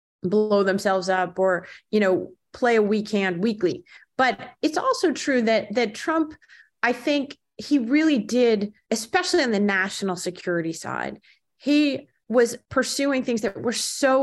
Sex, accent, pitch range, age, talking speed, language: female, American, 195-245 Hz, 30-49, 150 wpm, English